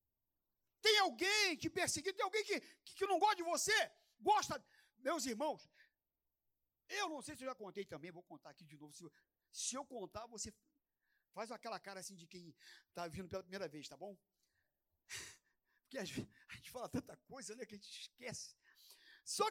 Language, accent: Portuguese, Brazilian